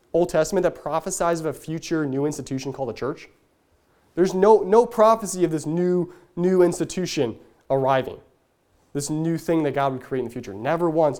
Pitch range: 145-205 Hz